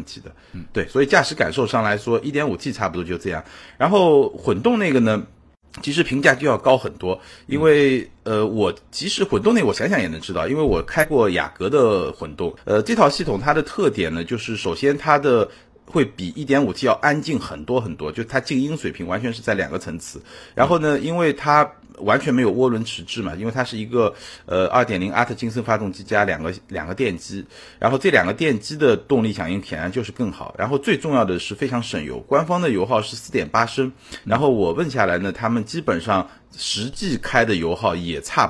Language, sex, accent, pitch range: Chinese, male, native, 95-140 Hz